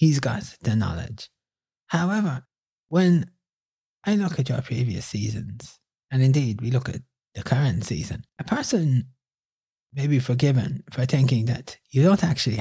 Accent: British